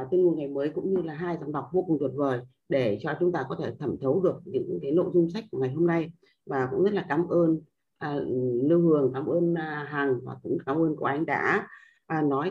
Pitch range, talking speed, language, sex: 140-205 Hz, 260 wpm, Vietnamese, female